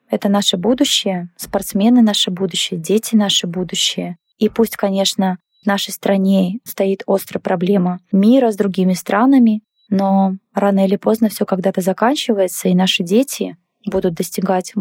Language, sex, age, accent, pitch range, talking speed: Russian, female, 20-39, native, 190-220 Hz, 140 wpm